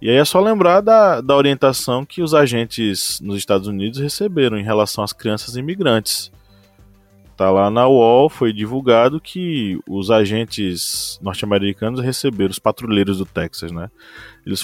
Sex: male